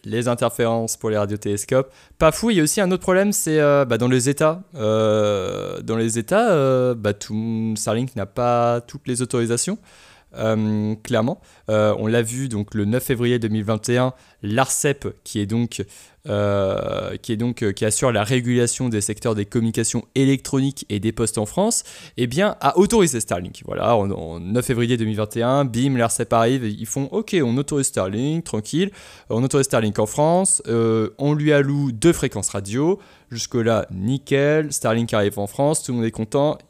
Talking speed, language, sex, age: 180 wpm, French, male, 20-39